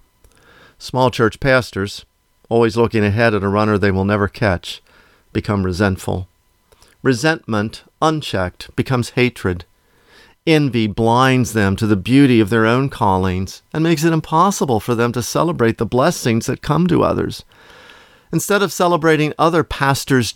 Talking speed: 140 wpm